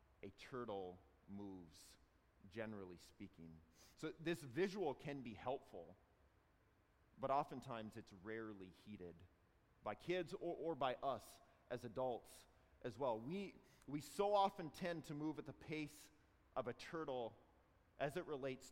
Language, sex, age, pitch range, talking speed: English, male, 30-49, 95-140 Hz, 135 wpm